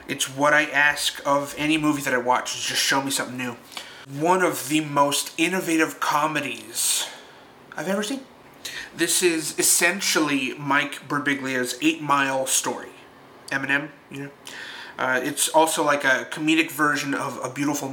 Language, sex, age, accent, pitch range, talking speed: English, male, 30-49, American, 140-160 Hz, 150 wpm